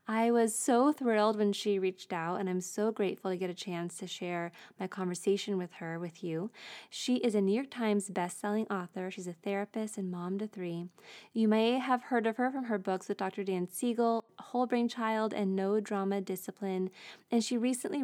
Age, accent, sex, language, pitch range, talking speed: 20-39, American, female, English, 190-230 Hz, 205 wpm